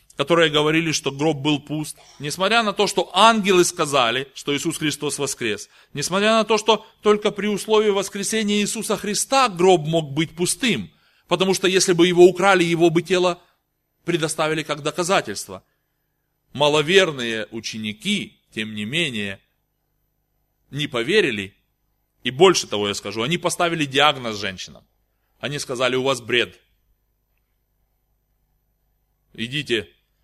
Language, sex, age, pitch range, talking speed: Russian, male, 20-39, 135-190 Hz, 125 wpm